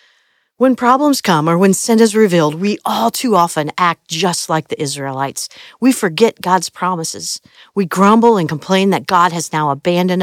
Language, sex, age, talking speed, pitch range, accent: English, female, 50-69, 175 wpm, 150-190 Hz, American